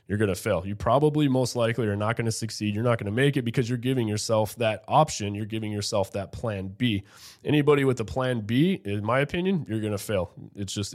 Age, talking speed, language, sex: 20-39, 245 wpm, English, male